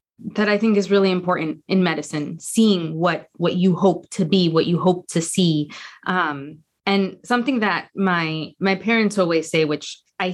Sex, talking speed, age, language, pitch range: female, 180 wpm, 20-39, English, 165-215 Hz